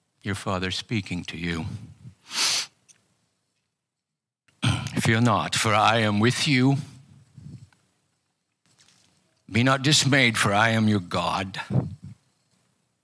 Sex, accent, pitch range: male, American, 105-140 Hz